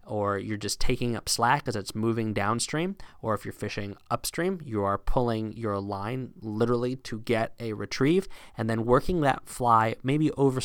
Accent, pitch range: American, 105-140 Hz